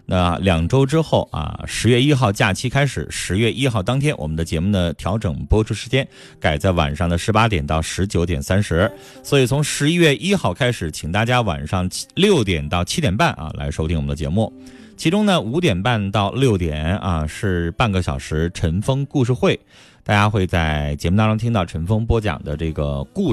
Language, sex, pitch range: Chinese, male, 85-115 Hz